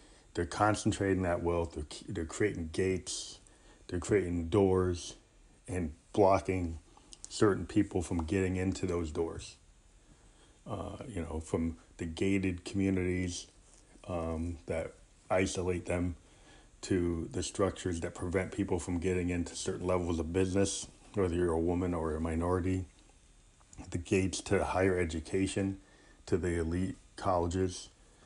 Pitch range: 85-95 Hz